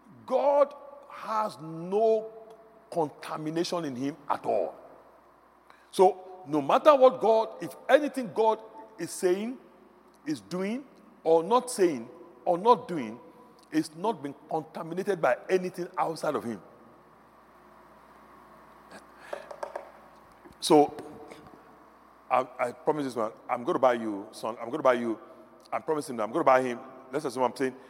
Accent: Nigerian